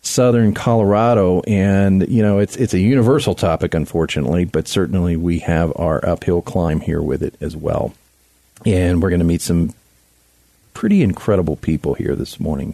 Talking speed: 165 wpm